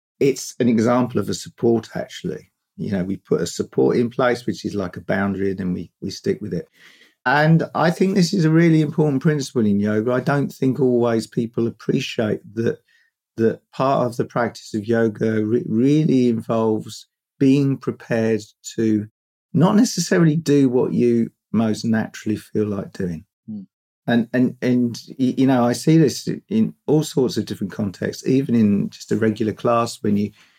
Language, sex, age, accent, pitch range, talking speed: English, male, 50-69, British, 105-135 Hz, 175 wpm